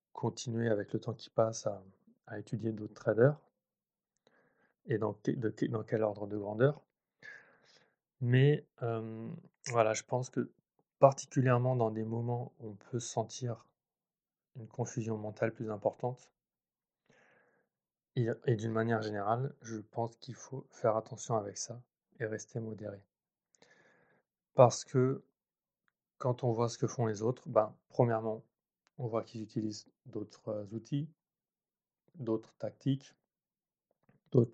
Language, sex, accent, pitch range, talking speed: French, male, French, 110-130 Hz, 130 wpm